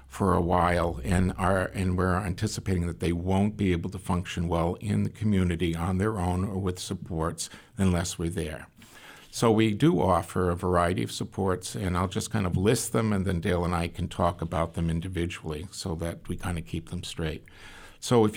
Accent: American